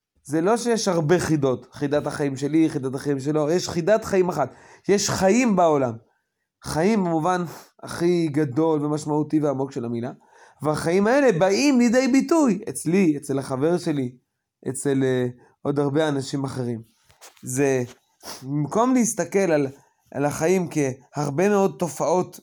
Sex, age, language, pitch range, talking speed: male, 20-39, Hebrew, 140-175 Hz, 135 wpm